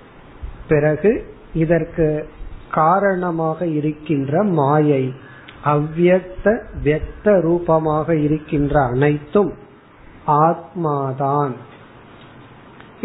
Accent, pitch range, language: native, 150-185 Hz, Tamil